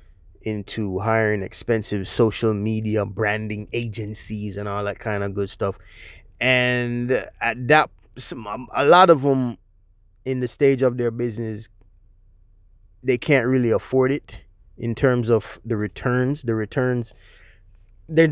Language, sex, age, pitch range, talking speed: English, male, 20-39, 100-120 Hz, 125 wpm